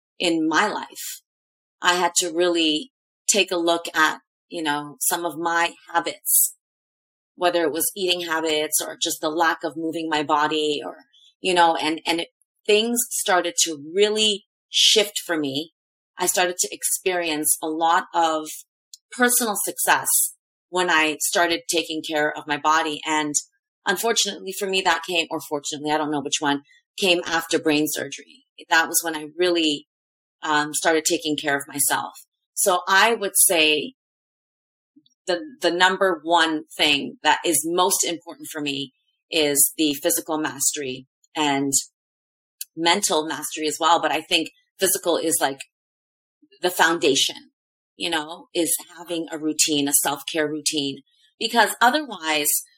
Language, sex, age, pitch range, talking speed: English, female, 30-49, 155-190 Hz, 150 wpm